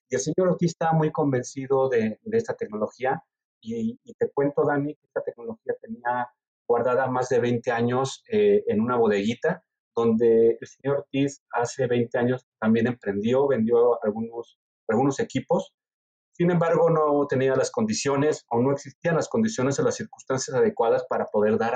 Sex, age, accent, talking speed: male, 40-59, Mexican, 165 wpm